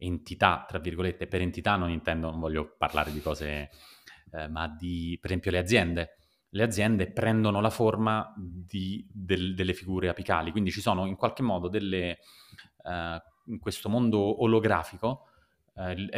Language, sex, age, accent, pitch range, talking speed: Italian, male, 30-49, native, 85-110 Hz, 155 wpm